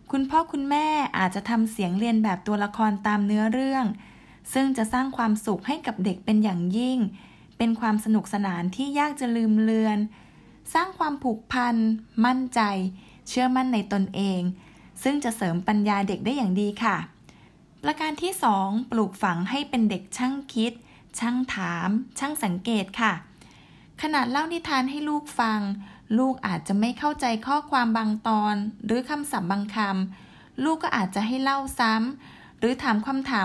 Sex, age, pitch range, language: female, 20-39, 205-265 Hz, Thai